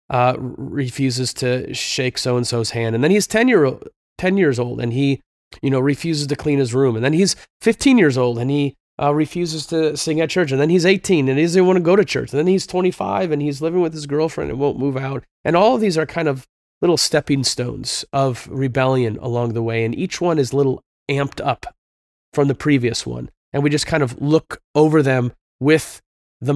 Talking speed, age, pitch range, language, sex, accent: 230 wpm, 30-49, 130-165 Hz, English, male, American